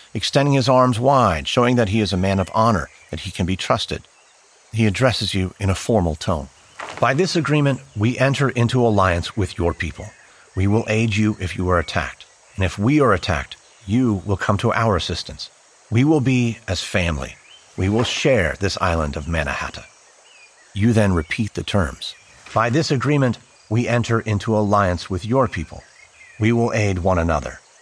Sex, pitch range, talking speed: male, 90-115 Hz, 185 wpm